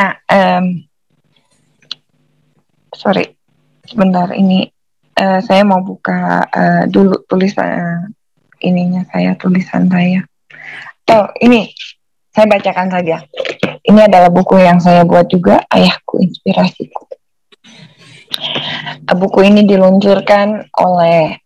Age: 20-39